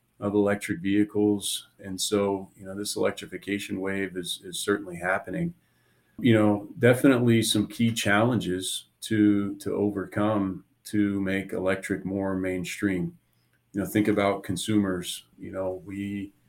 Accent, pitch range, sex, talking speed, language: American, 95-105 Hz, male, 130 wpm, English